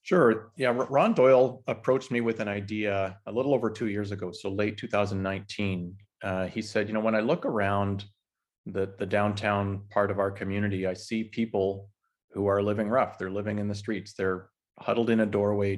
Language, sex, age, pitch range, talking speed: English, male, 30-49, 95-110 Hz, 195 wpm